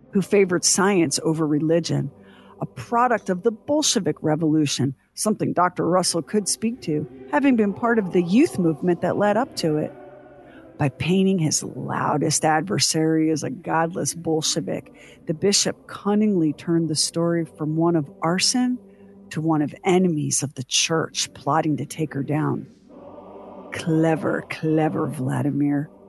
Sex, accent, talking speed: female, American, 145 wpm